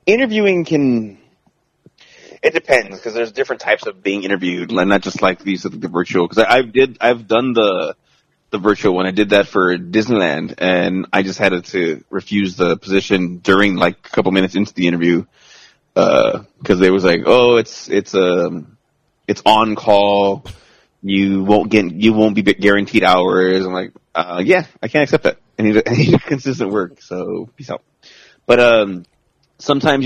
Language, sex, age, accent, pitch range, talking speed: English, male, 20-39, American, 95-110 Hz, 180 wpm